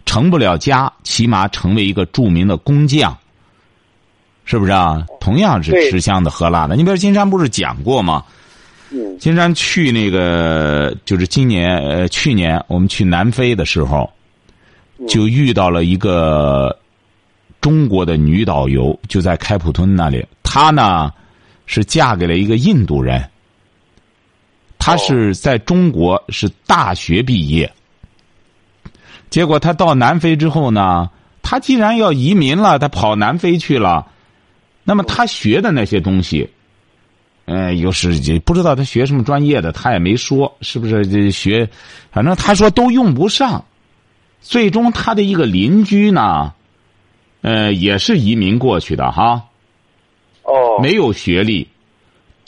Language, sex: Chinese, male